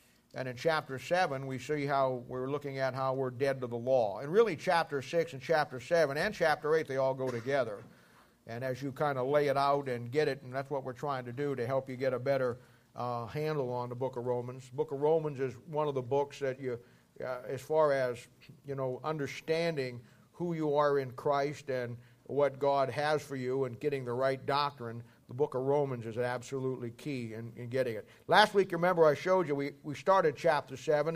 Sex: male